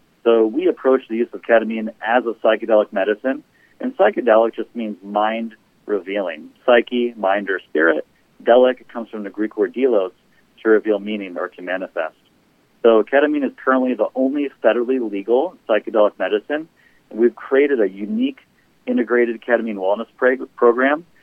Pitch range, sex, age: 105-130 Hz, male, 40-59